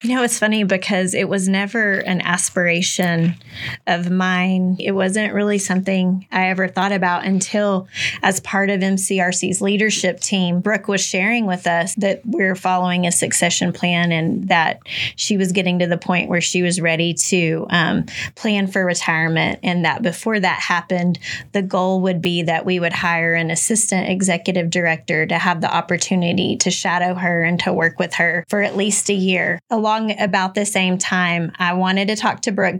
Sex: female